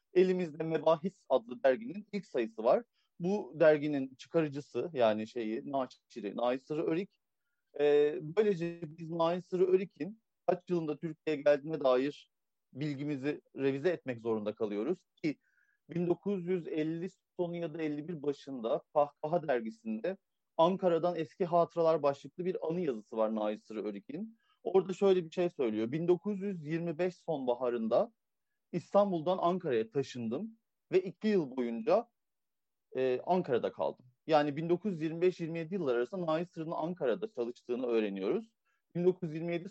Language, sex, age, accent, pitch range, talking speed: Turkish, male, 40-59, native, 140-185 Hz, 110 wpm